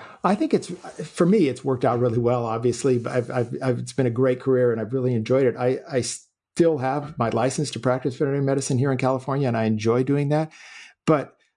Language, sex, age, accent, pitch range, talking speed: English, male, 50-69, American, 115-135 Hz, 230 wpm